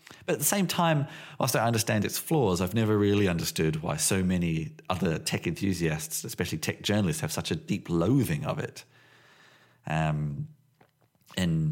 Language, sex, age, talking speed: English, male, 40-59, 165 wpm